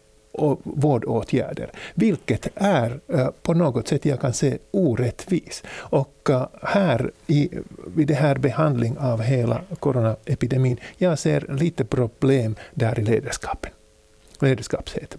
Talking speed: 115 wpm